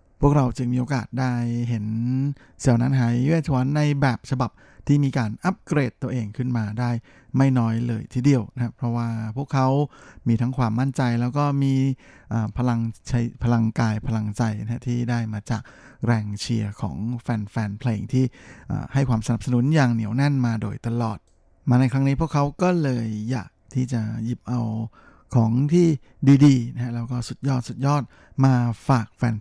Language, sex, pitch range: Thai, male, 115-135 Hz